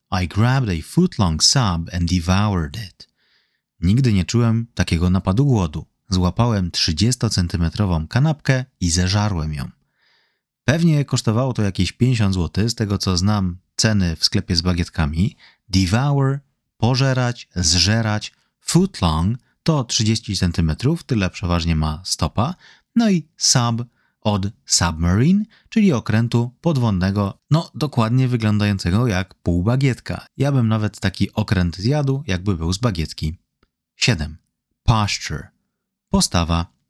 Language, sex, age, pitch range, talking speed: Polish, male, 30-49, 90-130 Hz, 120 wpm